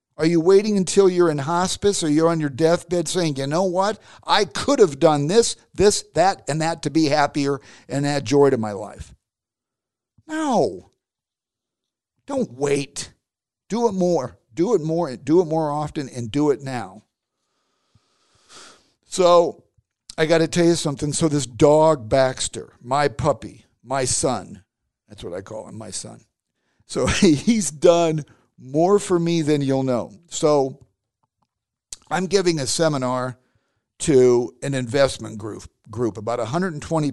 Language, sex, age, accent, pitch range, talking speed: English, male, 50-69, American, 125-165 Hz, 155 wpm